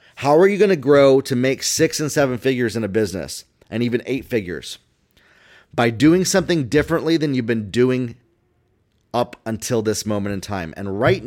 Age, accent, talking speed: 30-49, American, 185 wpm